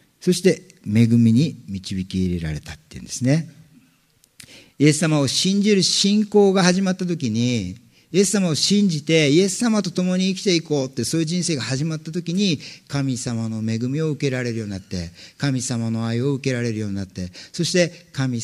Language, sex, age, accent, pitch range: Japanese, male, 50-69, native, 115-160 Hz